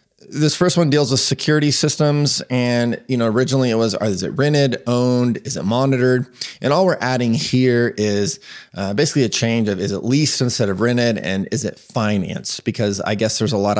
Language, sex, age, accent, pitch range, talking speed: English, male, 20-39, American, 100-130 Hz, 205 wpm